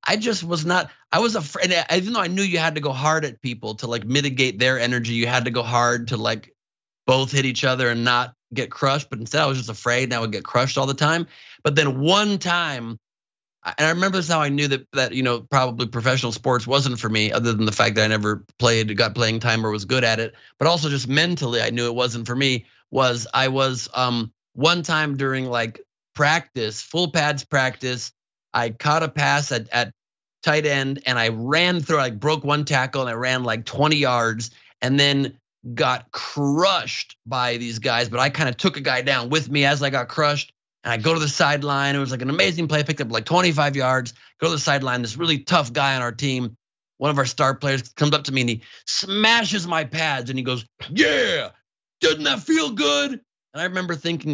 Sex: male